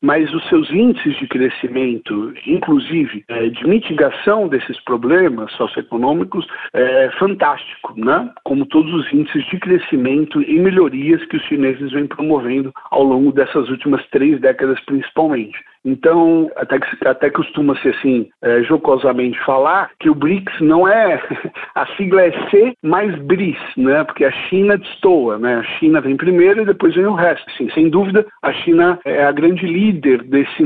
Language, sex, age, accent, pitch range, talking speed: Portuguese, male, 60-79, Brazilian, 145-195 Hz, 155 wpm